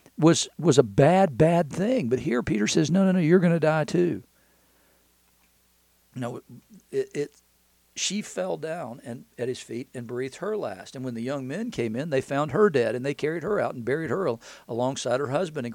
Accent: American